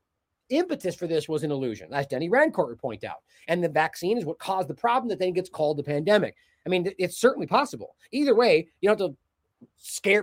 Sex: male